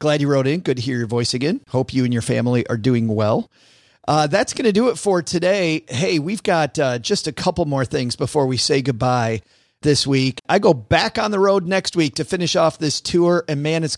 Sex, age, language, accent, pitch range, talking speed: male, 40-59, English, American, 120-155 Hz, 245 wpm